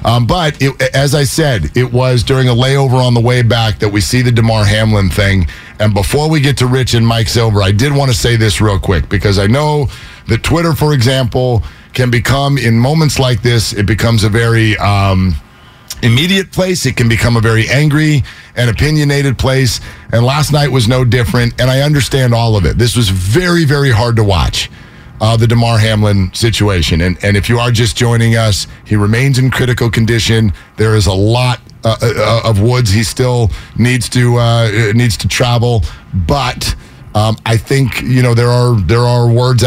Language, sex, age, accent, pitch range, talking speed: English, male, 50-69, American, 110-130 Hz, 200 wpm